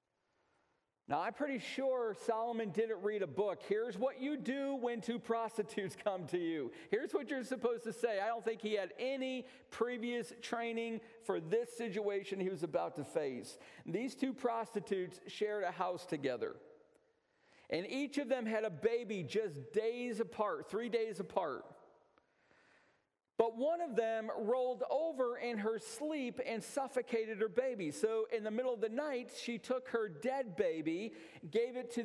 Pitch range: 195-245 Hz